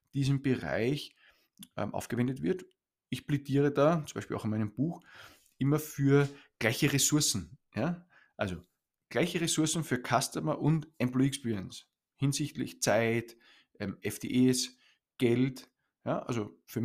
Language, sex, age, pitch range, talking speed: German, male, 20-39, 110-140 Hz, 125 wpm